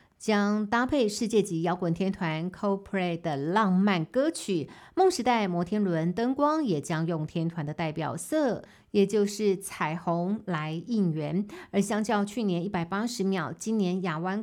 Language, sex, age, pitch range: Chinese, female, 50-69, 170-210 Hz